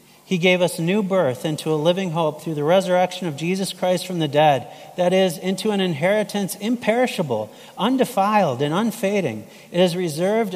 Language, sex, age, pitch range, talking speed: English, male, 40-59, 150-205 Hz, 170 wpm